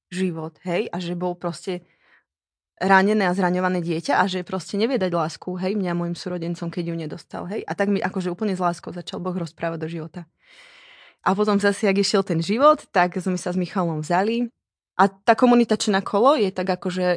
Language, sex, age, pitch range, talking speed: Slovak, female, 20-39, 175-205 Hz, 195 wpm